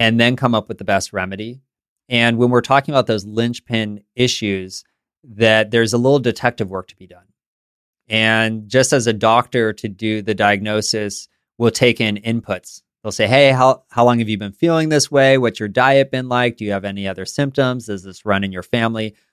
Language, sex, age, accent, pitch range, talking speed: English, male, 30-49, American, 105-125 Hz, 210 wpm